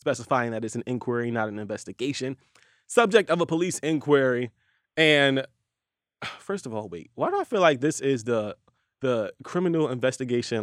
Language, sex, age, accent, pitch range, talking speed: English, male, 20-39, American, 130-170 Hz, 165 wpm